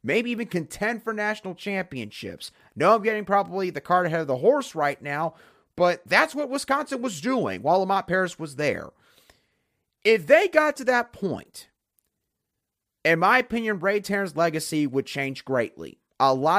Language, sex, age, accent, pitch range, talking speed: English, male, 30-49, American, 135-190 Hz, 165 wpm